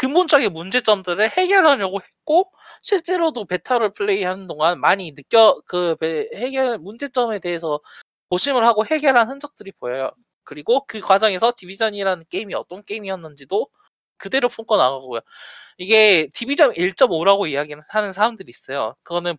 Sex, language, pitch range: male, Korean, 160-250 Hz